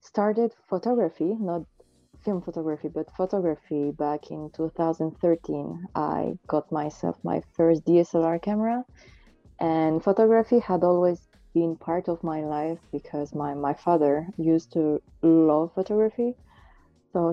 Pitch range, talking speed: 160-190 Hz, 120 wpm